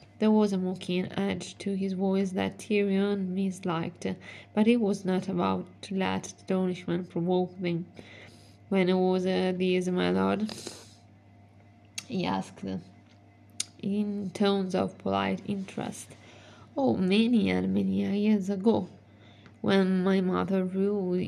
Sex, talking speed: female, 130 wpm